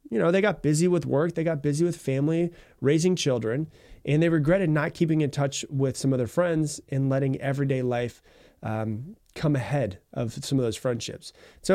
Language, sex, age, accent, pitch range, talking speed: English, male, 30-49, American, 120-160 Hz, 200 wpm